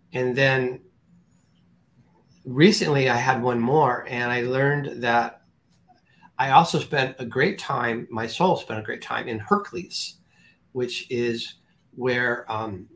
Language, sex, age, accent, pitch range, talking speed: English, male, 40-59, American, 115-145 Hz, 135 wpm